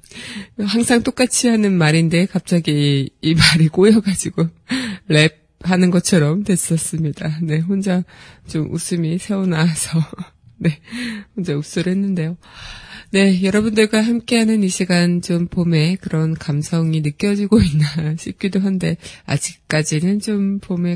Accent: native